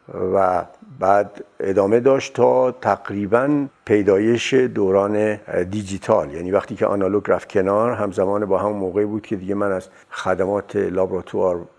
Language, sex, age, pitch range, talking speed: Persian, male, 60-79, 100-130 Hz, 140 wpm